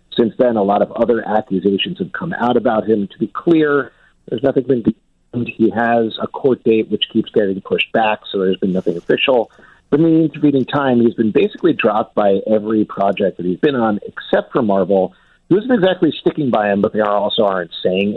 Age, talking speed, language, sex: 50-69, 210 wpm, English, male